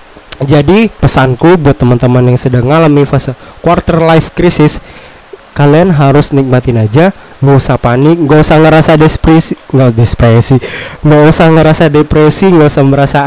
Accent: native